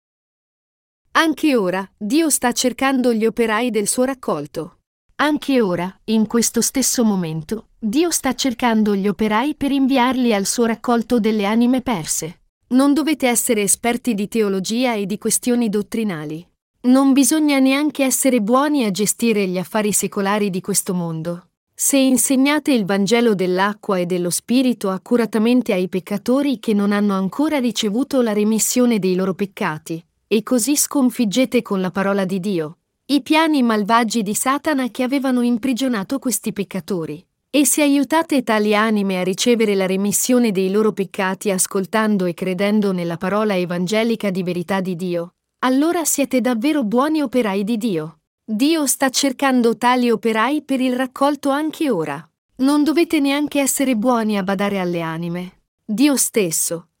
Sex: female